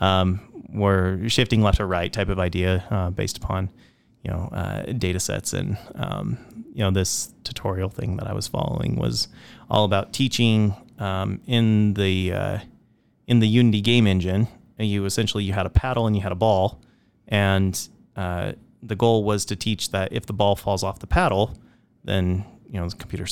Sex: male